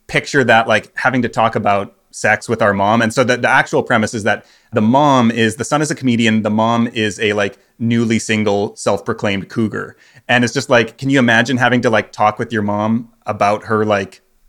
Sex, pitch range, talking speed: male, 110-125 Hz, 220 wpm